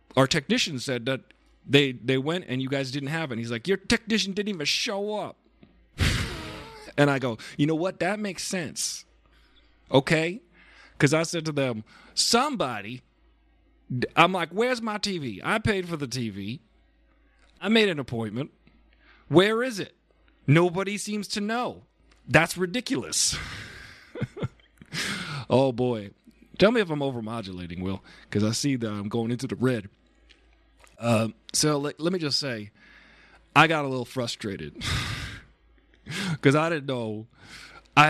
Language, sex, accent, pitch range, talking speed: English, male, American, 115-170 Hz, 150 wpm